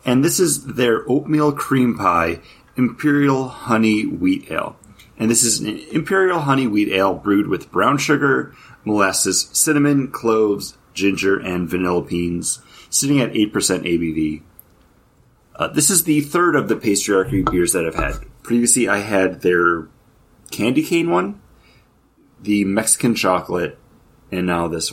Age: 30-49